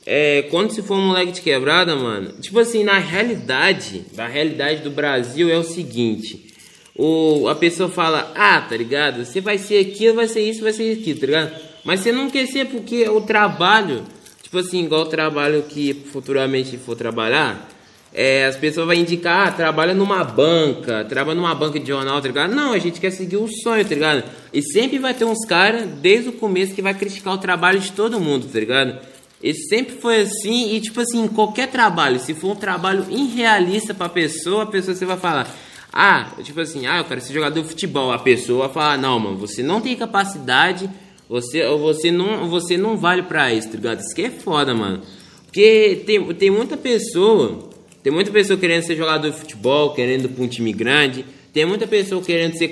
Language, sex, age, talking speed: Portuguese, male, 20-39, 200 wpm